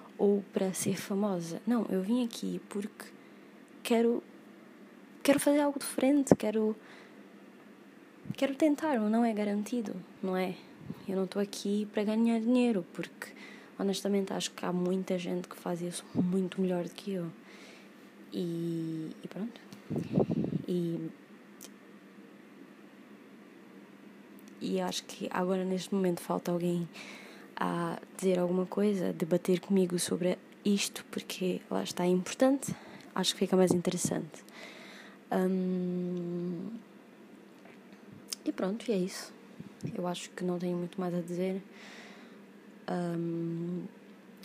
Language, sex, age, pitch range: Portuguese, female, 20-39, 180-215 Hz